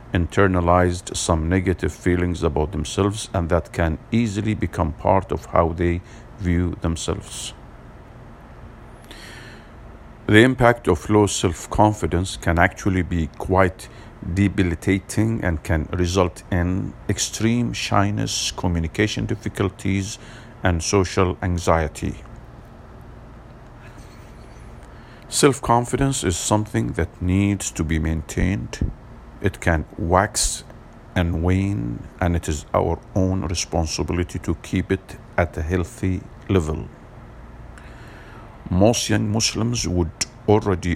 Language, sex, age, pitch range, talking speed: English, male, 50-69, 85-105 Hz, 100 wpm